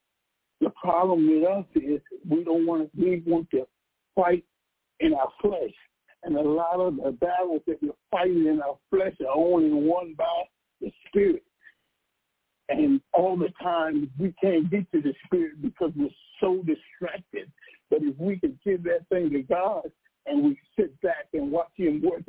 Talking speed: 175 wpm